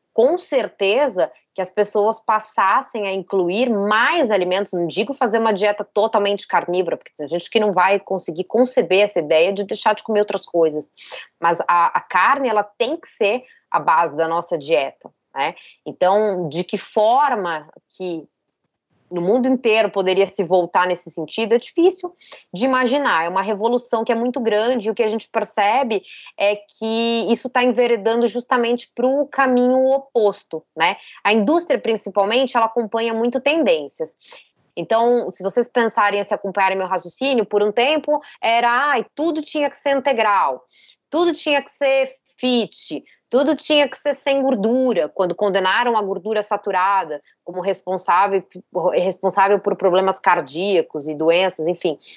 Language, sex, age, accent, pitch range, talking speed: Portuguese, female, 20-39, Brazilian, 195-255 Hz, 160 wpm